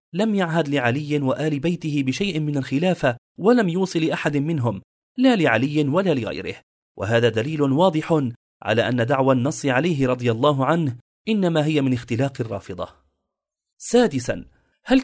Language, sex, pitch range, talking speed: Arabic, male, 125-160 Hz, 135 wpm